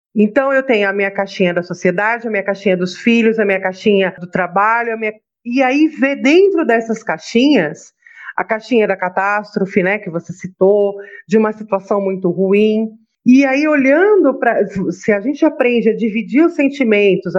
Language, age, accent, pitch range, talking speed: Portuguese, 40-59, Brazilian, 195-265 Hz, 175 wpm